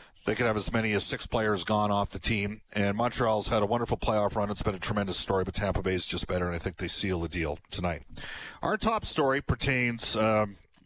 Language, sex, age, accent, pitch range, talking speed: English, male, 40-59, American, 100-115 Hz, 230 wpm